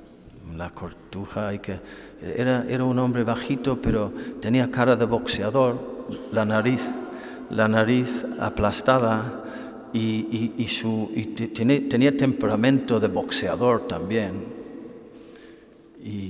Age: 50-69